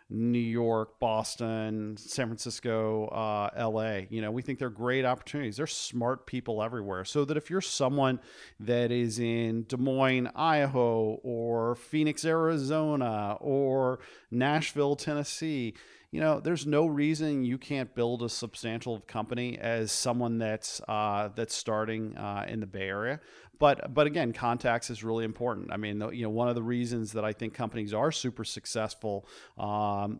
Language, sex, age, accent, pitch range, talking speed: English, male, 40-59, American, 110-130 Hz, 160 wpm